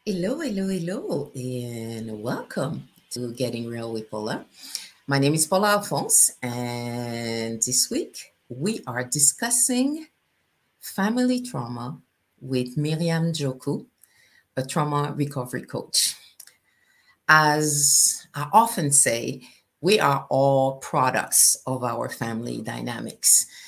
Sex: female